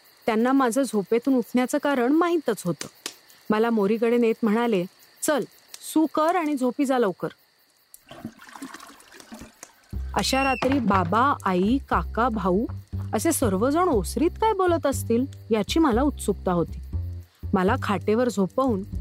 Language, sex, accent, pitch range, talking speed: Marathi, female, native, 200-280 Hz, 115 wpm